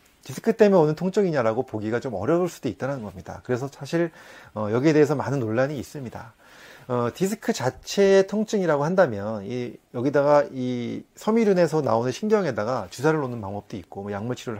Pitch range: 115-185 Hz